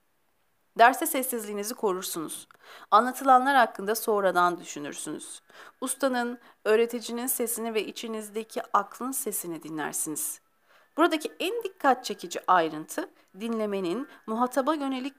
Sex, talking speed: female, 90 wpm